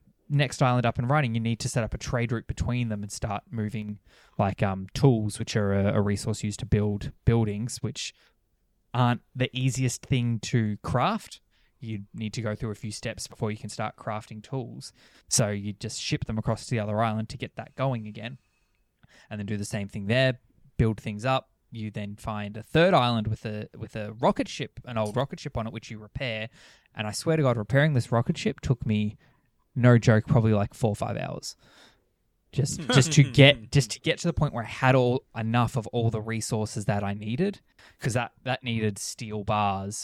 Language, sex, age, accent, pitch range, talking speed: English, male, 20-39, Australian, 105-130 Hz, 215 wpm